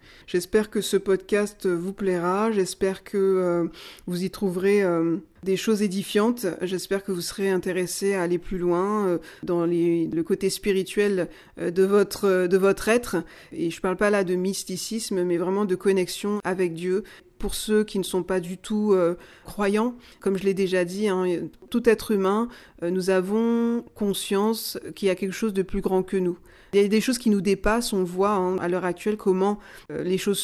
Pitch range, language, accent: 180-205 Hz, French, French